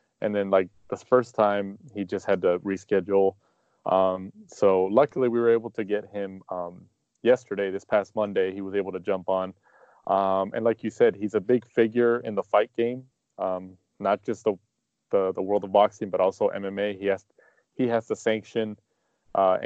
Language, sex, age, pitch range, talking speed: English, male, 20-39, 100-115 Hz, 195 wpm